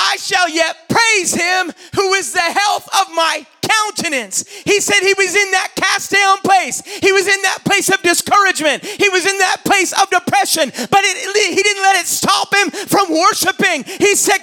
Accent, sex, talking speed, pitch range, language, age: American, male, 190 wpm, 370-430 Hz, English, 40-59